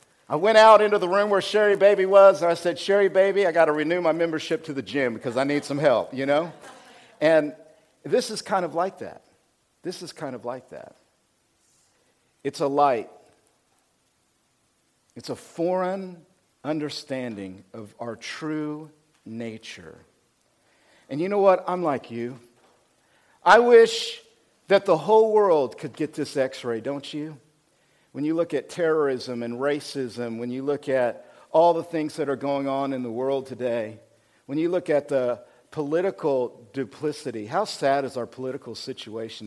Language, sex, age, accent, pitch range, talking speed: English, male, 50-69, American, 135-200 Hz, 165 wpm